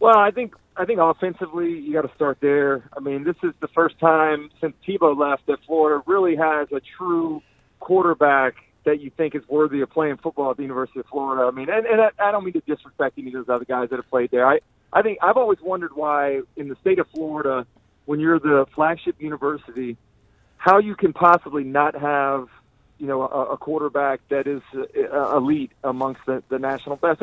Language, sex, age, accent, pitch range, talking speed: English, male, 40-59, American, 135-170 Hz, 215 wpm